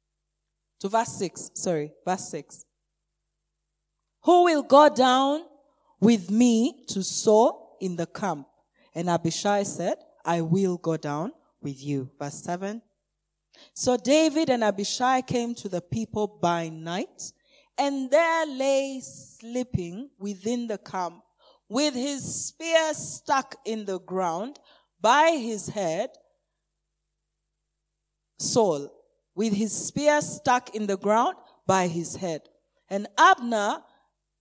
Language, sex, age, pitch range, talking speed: English, female, 20-39, 175-270 Hz, 120 wpm